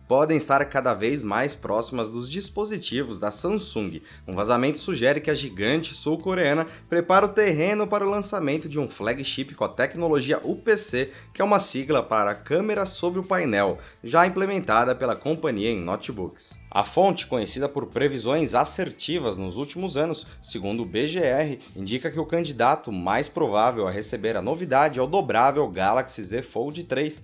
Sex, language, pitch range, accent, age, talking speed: male, Portuguese, 120-170 Hz, Brazilian, 20-39, 165 wpm